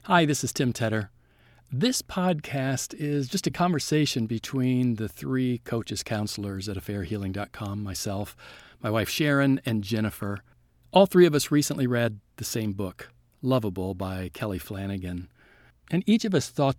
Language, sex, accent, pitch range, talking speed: English, male, American, 110-140 Hz, 150 wpm